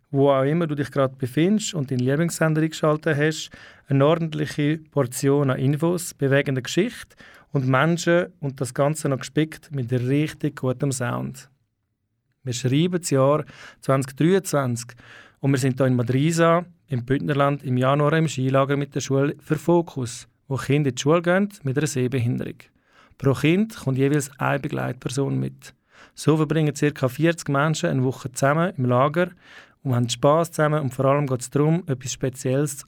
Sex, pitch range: male, 130-160 Hz